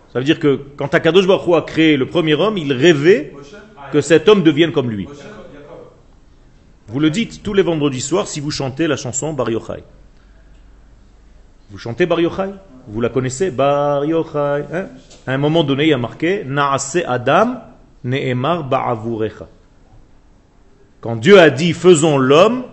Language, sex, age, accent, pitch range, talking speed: French, male, 40-59, French, 125-170 Hz, 170 wpm